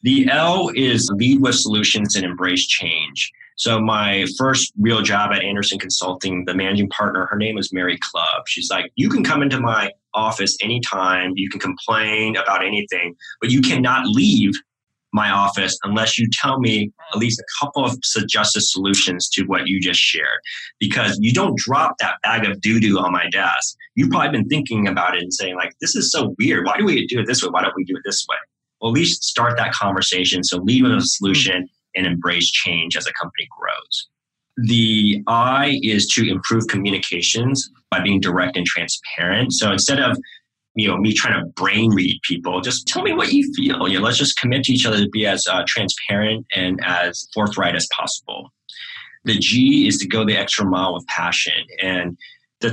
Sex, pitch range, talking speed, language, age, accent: male, 95-115 Hz, 200 wpm, English, 20-39, American